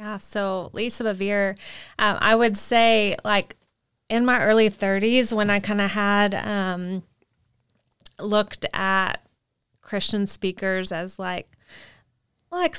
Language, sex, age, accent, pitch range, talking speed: English, female, 20-39, American, 185-215 Hz, 115 wpm